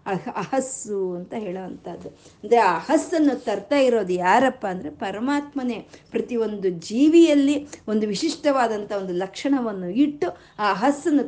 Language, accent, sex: Kannada, native, female